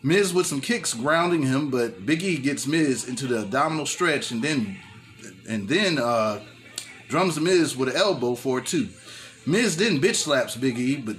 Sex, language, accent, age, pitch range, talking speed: male, English, American, 30-49, 130-180 Hz, 195 wpm